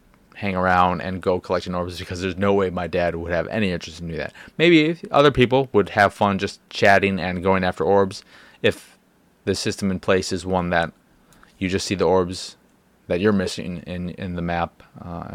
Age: 20-39